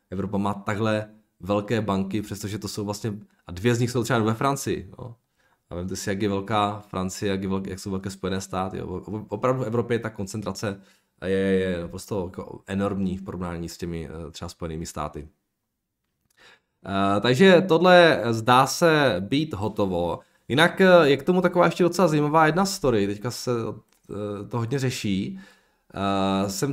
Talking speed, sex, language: 165 wpm, male, Czech